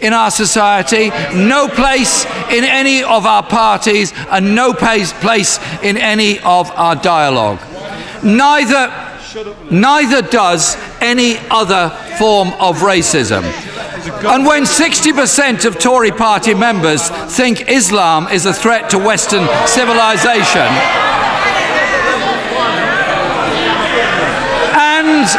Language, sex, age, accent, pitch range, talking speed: English, male, 50-69, British, 195-250 Hz, 100 wpm